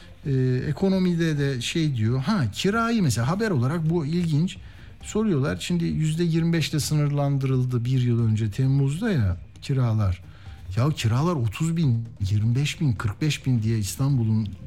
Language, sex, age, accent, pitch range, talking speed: Turkish, male, 60-79, native, 110-160 Hz, 135 wpm